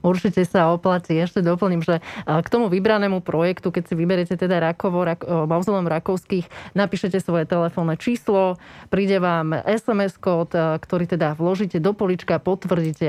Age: 20-39